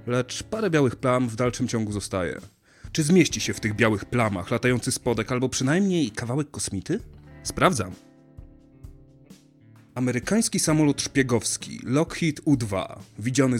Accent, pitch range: native, 115-145 Hz